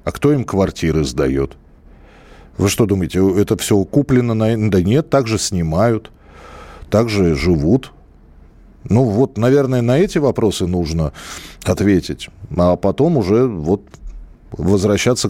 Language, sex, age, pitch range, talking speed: Russian, male, 40-59, 95-135 Hz, 120 wpm